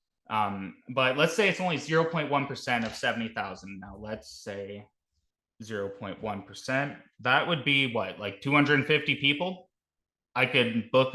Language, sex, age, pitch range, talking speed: English, male, 20-39, 115-145 Hz, 125 wpm